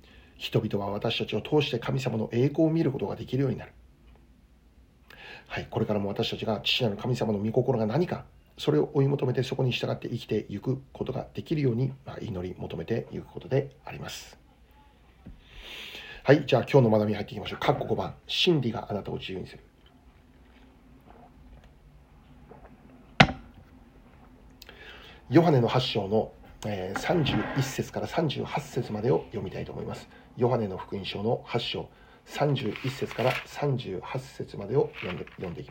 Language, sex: Japanese, male